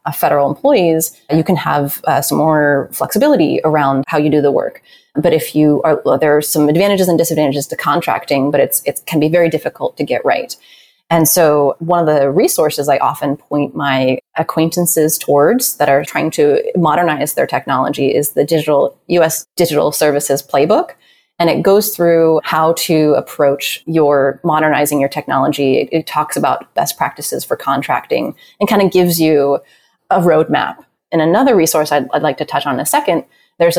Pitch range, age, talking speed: 145-170 Hz, 20-39, 185 wpm